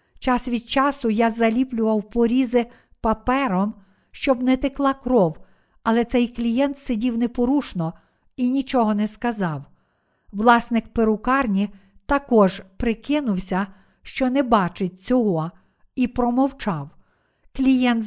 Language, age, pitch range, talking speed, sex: Ukrainian, 50-69, 205-260 Hz, 105 wpm, female